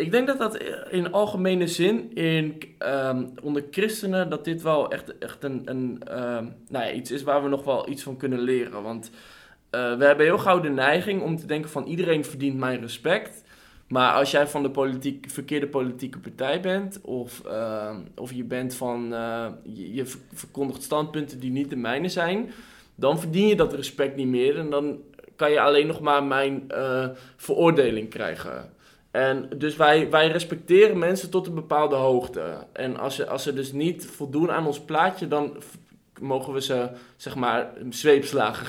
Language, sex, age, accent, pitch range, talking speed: Dutch, male, 20-39, Dutch, 130-170 Hz, 180 wpm